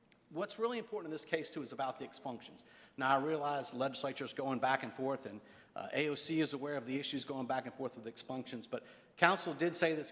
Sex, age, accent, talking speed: male, 50-69, American, 235 wpm